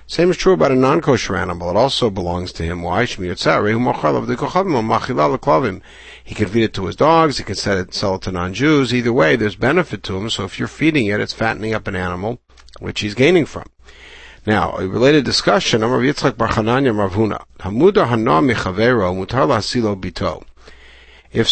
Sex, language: male, English